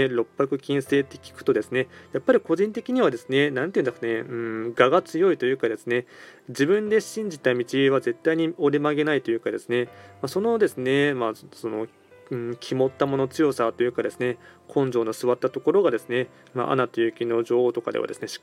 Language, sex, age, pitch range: Japanese, male, 20-39, 120-145 Hz